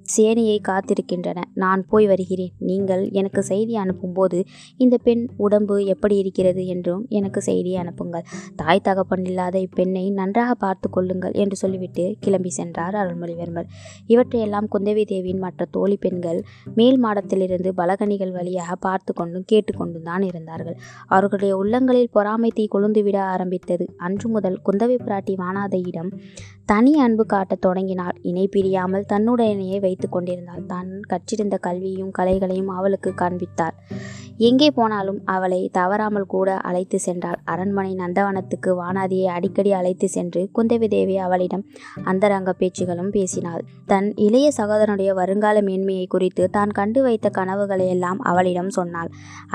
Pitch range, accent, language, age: 185-205 Hz, native, Tamil, 20-39